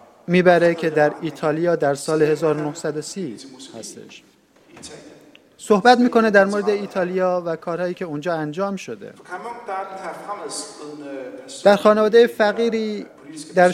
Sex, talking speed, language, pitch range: male, 100 wpm, Persian, 155-200 Hz